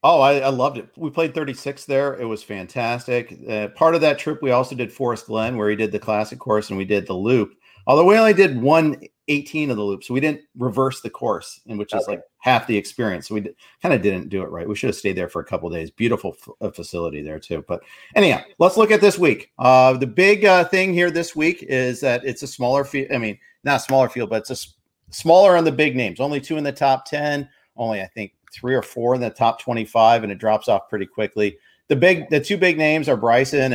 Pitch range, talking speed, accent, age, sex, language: 110-145 Hz, 255 wpm, American, 50-69, male, English